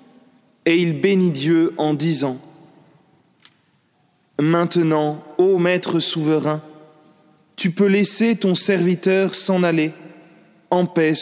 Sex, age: male, 30-49